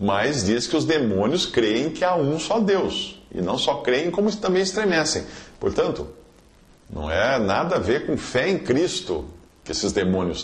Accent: Brazilian